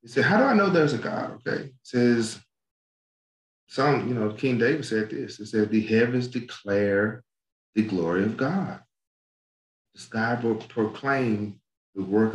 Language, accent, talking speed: English, American, 155 wpm